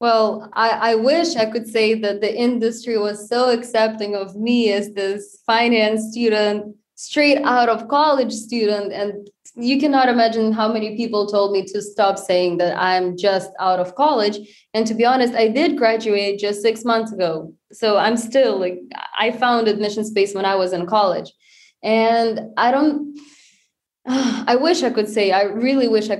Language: English